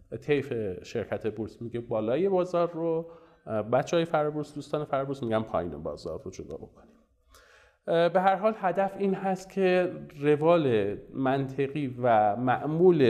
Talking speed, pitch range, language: 135 wpm, 120-155 Hz, Persian